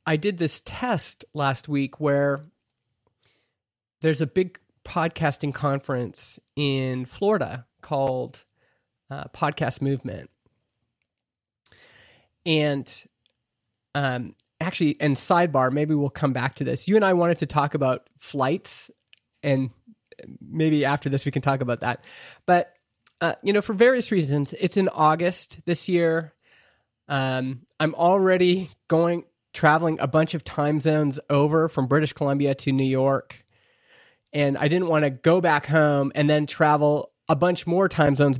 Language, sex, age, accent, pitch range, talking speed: English, male, 30-49, American, 135-170 Hz, 140 wpm